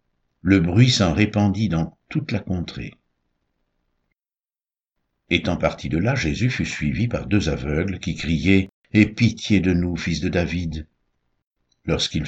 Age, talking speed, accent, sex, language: 60-79, 135 wpm, French, male, French